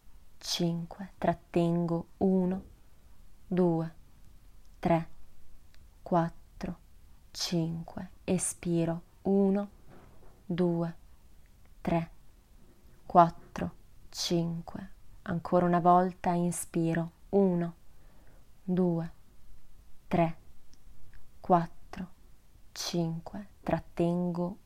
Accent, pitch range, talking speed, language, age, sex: native, 165-185 Hz, 55 wpm, Italian, 20-39, female